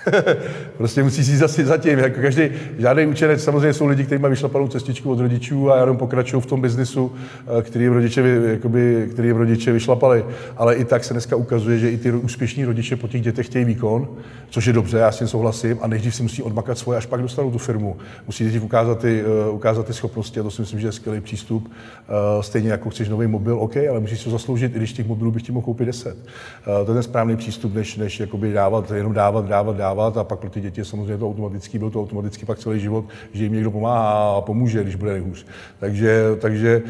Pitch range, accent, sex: 105-120 Hz, native, male